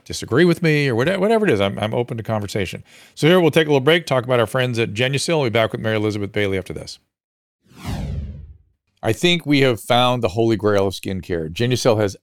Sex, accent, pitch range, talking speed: male, American, 100-130 Hz, 225 wpm